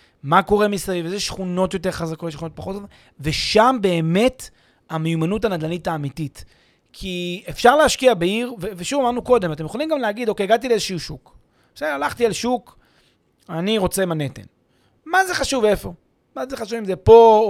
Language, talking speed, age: Hebrew, 165 wpm, 30-49